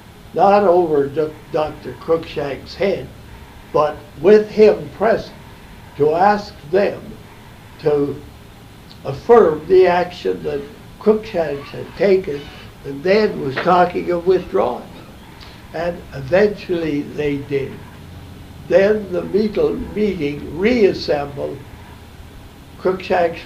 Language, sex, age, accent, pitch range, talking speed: English, male, 60-79, American, 110-175 Hz, 90 wpm